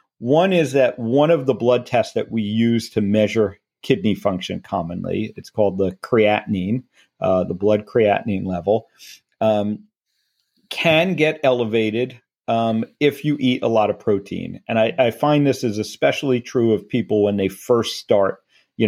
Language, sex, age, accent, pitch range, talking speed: English, male, 40-59, American, 105-130 Hz, 165 wpm